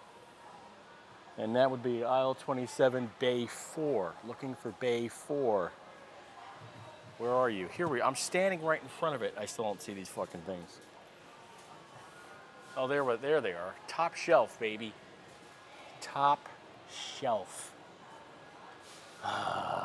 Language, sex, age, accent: English, male, 40-59, American